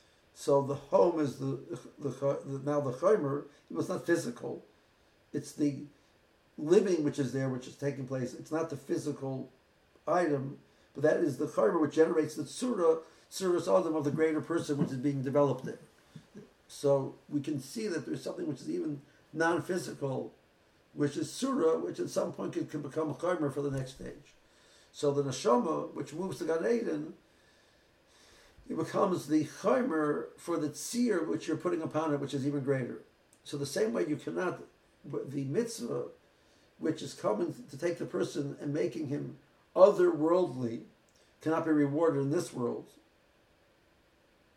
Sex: male